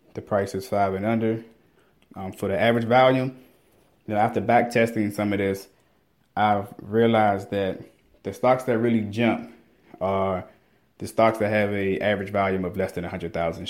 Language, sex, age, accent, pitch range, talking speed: English, male, 20-39, American, 95-110 Hz, 180 wpm